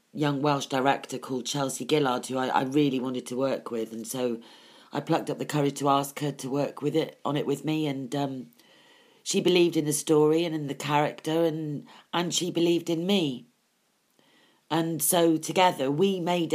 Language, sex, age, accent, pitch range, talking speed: English, female, 40-59, British, 140-225 Hz, 195 wpm